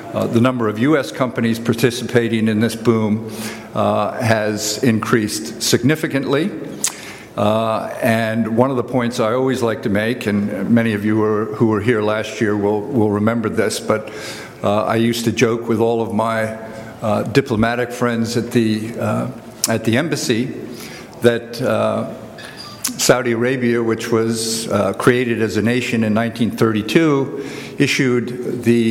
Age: 50-69